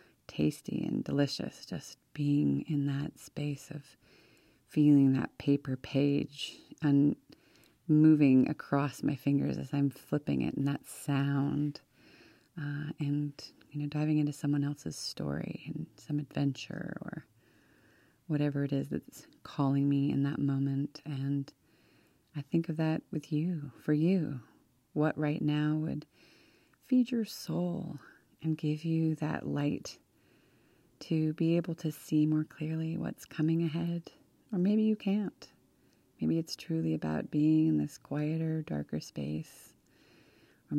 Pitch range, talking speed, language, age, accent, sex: 140-160 Hz, 135 wpm, English, 30-49, American, female